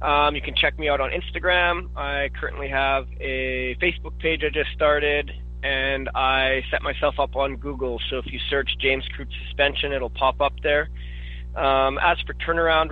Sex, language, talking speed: male, English, 180 wpm